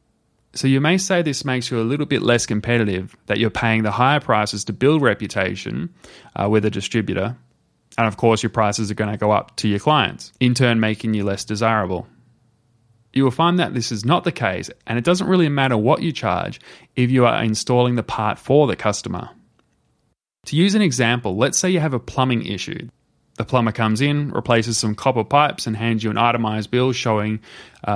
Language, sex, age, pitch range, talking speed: English, male, 20-39, 110-130 Hz, 210 wpm